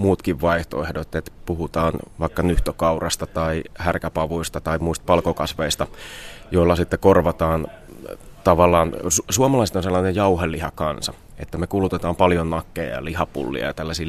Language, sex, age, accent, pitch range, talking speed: Finnish, male, 30-49, native, 80-90 Hz, 120 wpm